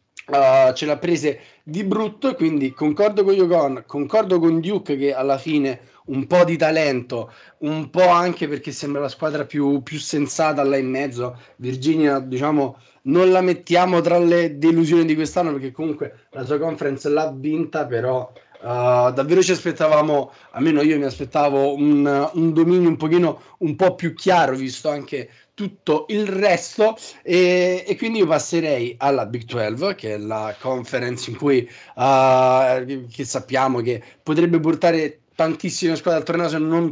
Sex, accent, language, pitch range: male, native, Italian, 135-170 Hz